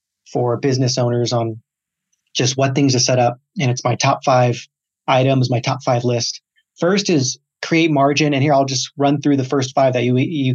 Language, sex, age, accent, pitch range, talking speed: English, male, 30-49, American, 125-145 Hz, 205 wpm